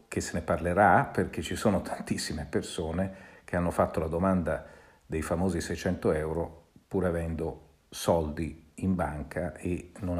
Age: 50-69